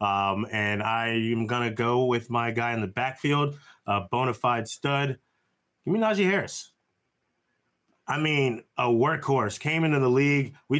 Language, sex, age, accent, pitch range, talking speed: English, male, 20-39, American, 115-140 Hz, 165 wpm